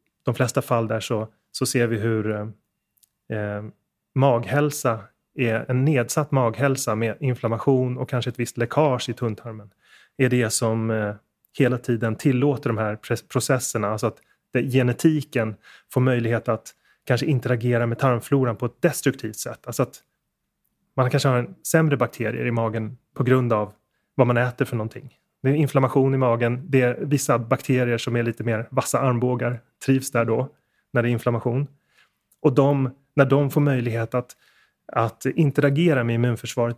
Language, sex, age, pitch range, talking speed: English, male, 30-49, 115-135 Hz, 165 wpm